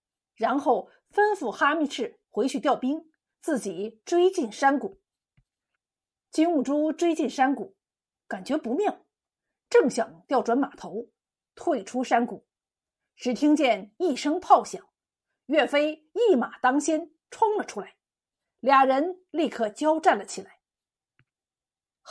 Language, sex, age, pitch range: Chinese, female, 50-69, 260-355 Hz